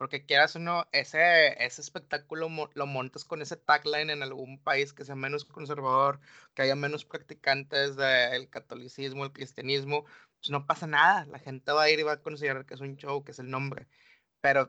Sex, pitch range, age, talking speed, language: male, 135-155 Hz, 20-39, 205 wpm, Spanish